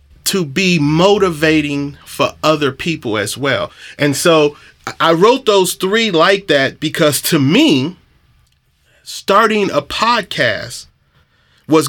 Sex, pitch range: male, 140-195 Hz